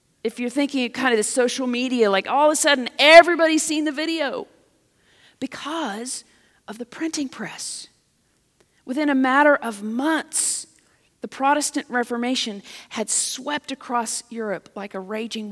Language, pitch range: English, 210-260 Hz